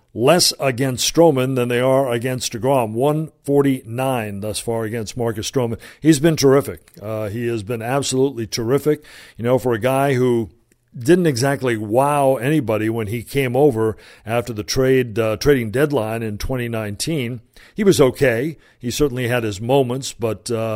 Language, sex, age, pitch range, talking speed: English, male, 50-69, 115-135 Hz, 160 wpm